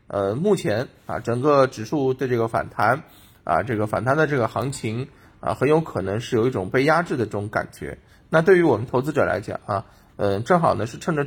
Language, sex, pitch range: Chinese, male, 110-140 Hz